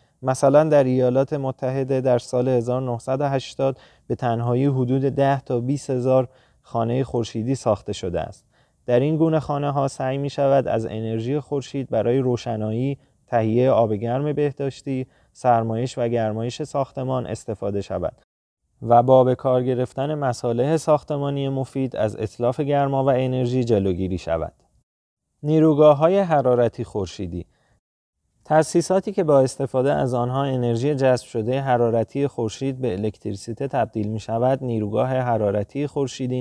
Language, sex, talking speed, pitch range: Persian, male, 130 wpm, 115-140 Hz